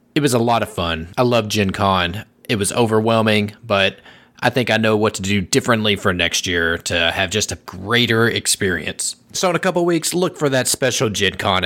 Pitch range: 95-120 Hz